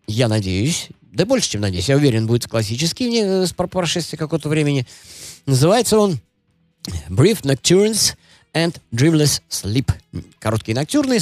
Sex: male